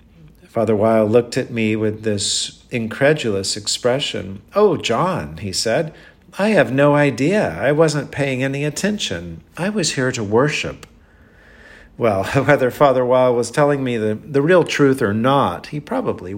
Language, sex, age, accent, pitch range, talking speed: English, male, 50-69, American, 105-140 Hz, 155 wpm